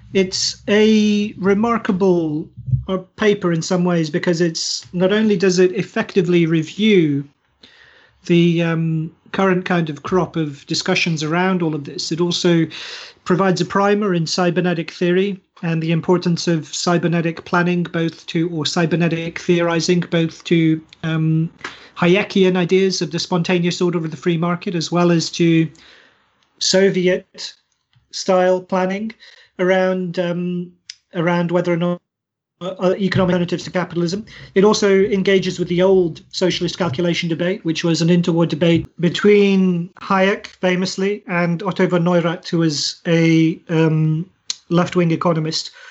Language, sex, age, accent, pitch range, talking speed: English, male, 40-59, British, 165-190 Hz, 135 wpm